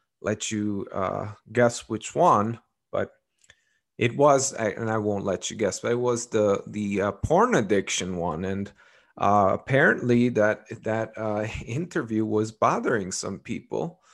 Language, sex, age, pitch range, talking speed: English, male, 30-49, 105-125 Hz, 150 wpm